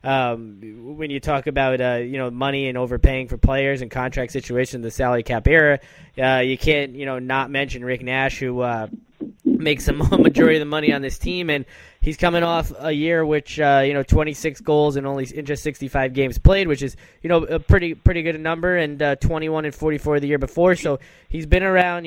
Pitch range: 130-155 Hz